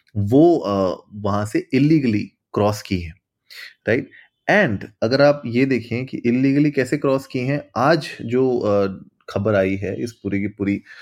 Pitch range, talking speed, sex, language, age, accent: 100-120 Hz, 160 wpm, male, Hindi, 30-49, native